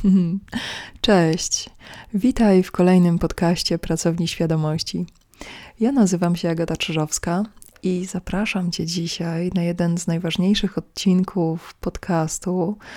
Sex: female